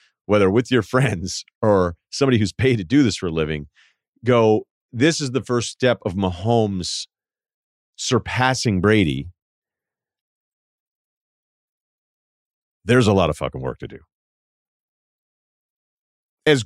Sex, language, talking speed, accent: male, English, 120 wpm, American